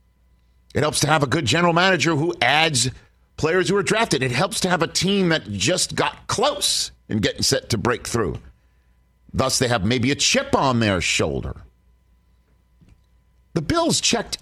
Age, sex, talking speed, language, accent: 50-69, male, 175 wpm, English, American